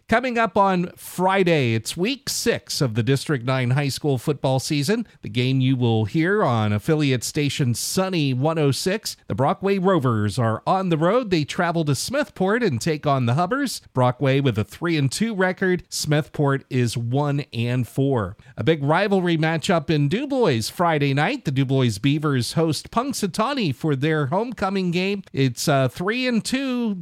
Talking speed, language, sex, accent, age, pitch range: 150 wpm, English, male, American, 40-59, 125-180 Hz